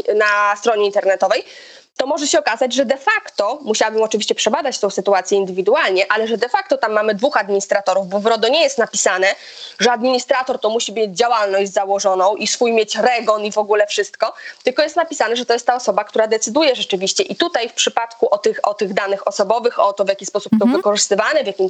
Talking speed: 205 wpm